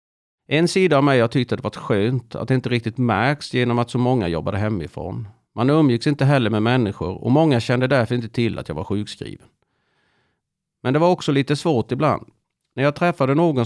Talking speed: 210 wpm